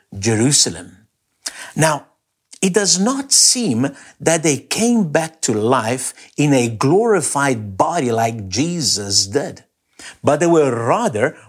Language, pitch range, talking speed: English, 120-190 Hz, 120 wpm